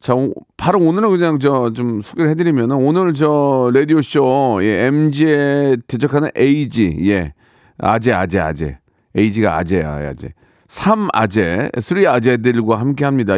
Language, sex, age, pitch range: Korean, male, 40-59, 115-150 Hz